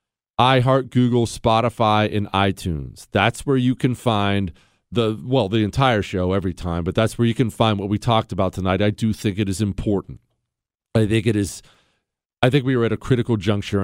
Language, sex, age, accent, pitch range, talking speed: English, male, 40-59, American, 100-135 Hz, 200 wpm